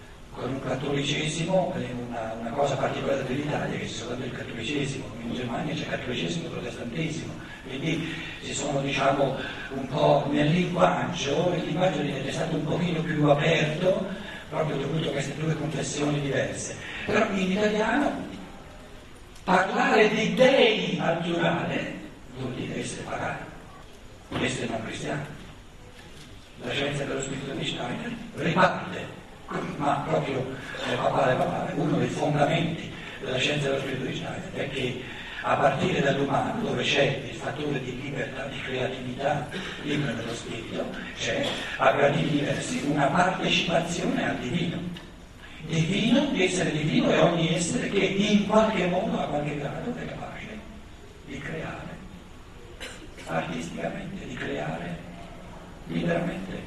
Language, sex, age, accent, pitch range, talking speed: Italian, male, 60-79, native, 135-180 Hz, 130 wpm